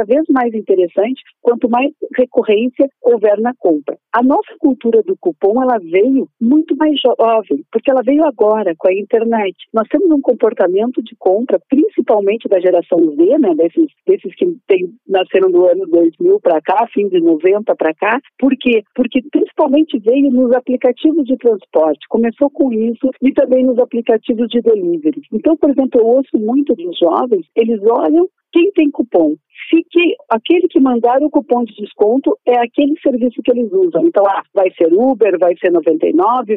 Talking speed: 170 wpm